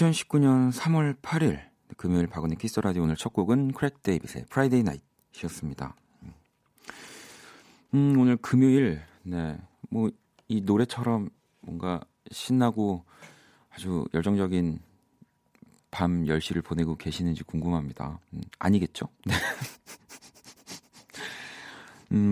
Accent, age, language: native, 40-59, Korean